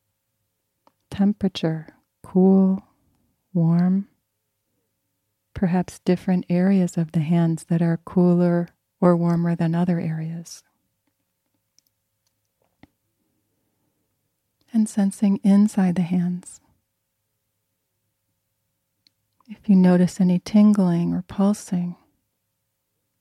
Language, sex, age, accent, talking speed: English, female, 30-49, American, 75 wpm